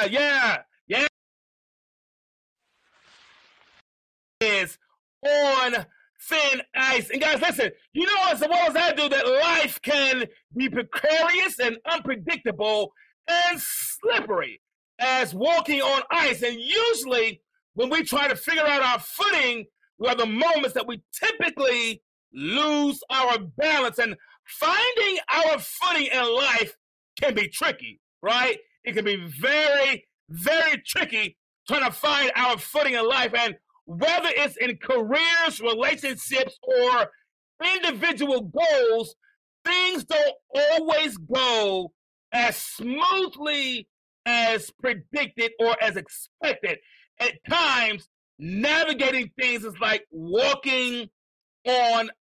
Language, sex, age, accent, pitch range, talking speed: English, male, 40-59, American, 240-325 Hz, 115 wpm